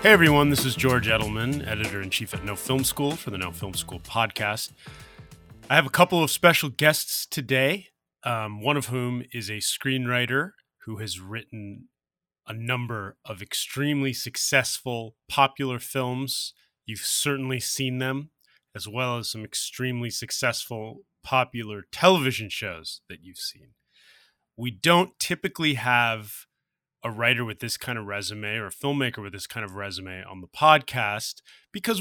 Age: 30-49